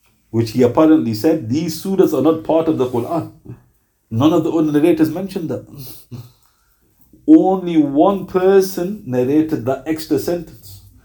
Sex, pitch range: male, 120-175 Hz